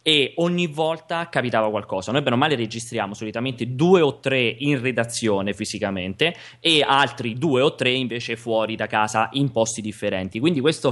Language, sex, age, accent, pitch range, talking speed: Italian, male, 20-39, native, 110-140 Hz, 170 wpm